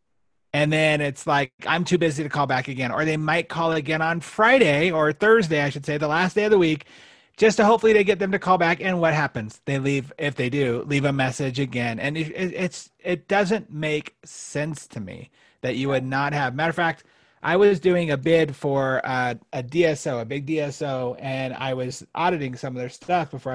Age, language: 30-49, English